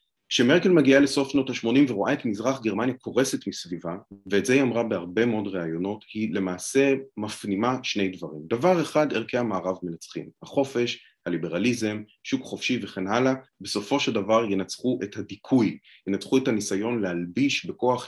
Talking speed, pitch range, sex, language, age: 150 wpm, 95-130 Hz, male, Hebrew, 30-49